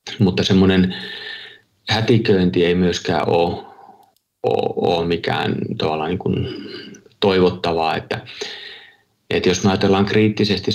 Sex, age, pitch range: male, 30-49, 90-105 Hz